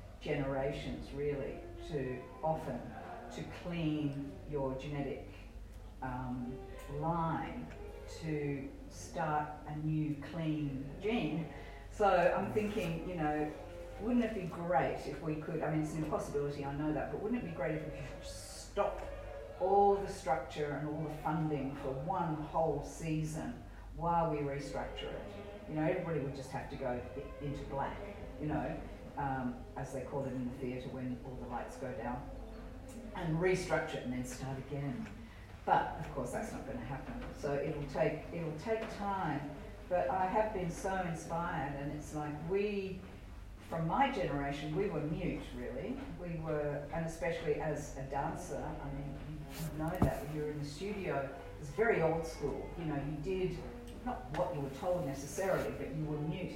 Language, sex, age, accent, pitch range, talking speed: English, female, 40-59, Australian, 135-165 Hz, 170 wpm